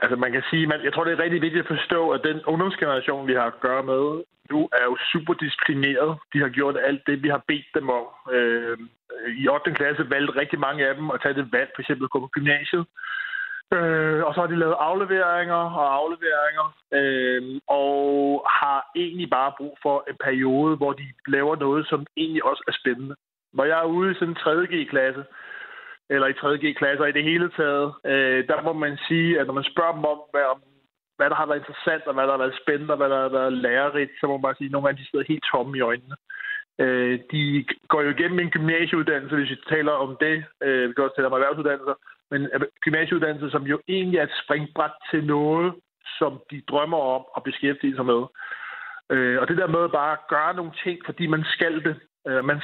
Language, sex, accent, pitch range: Danish, male, native, 135-165 Hz